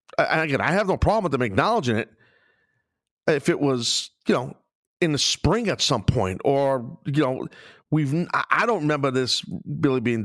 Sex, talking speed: male, 175 wpm